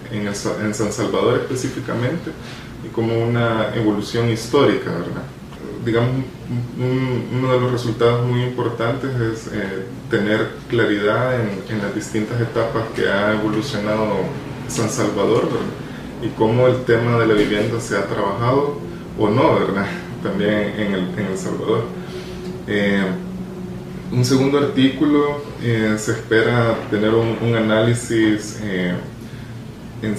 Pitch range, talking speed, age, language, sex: 105-120 Hz, 135 wpm, 20-39, Spanish, male